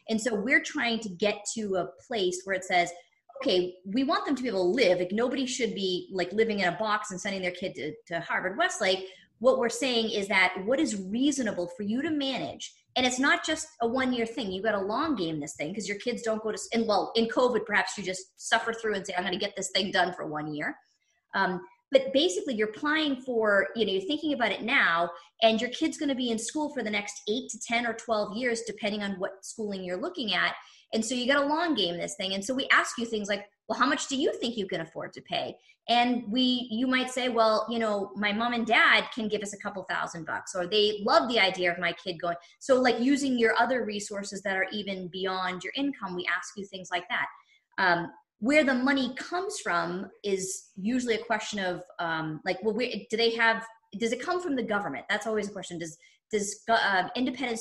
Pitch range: 190-250 Hz